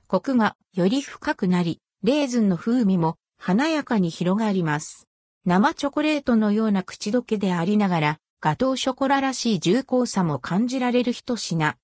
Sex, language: female, Japanese